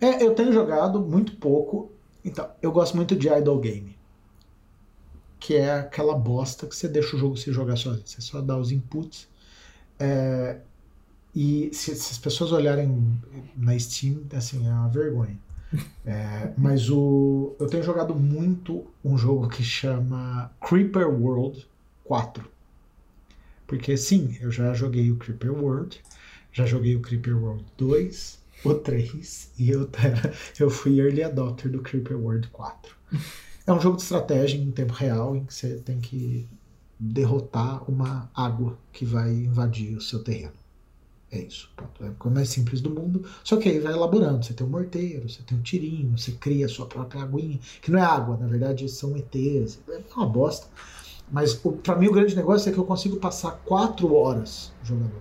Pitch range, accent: 115-150 Hz, Brazilian